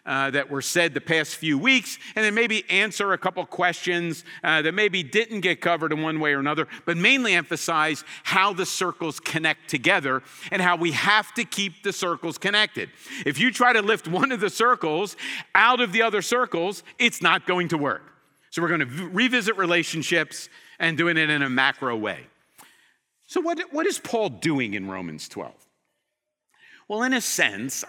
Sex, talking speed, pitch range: male, 190 wpm, 160-225 Hz